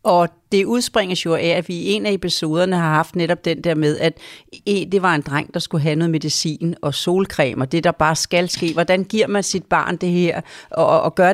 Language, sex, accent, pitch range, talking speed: Danish, female, native, 155-195 Hz, 240 wpm